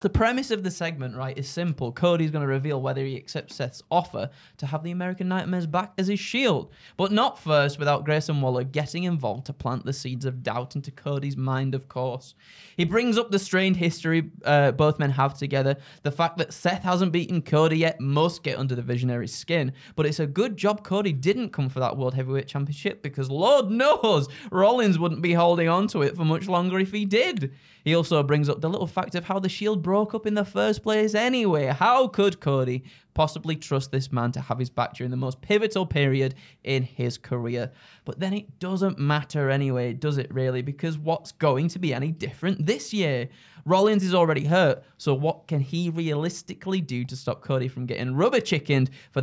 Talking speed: 210 wpm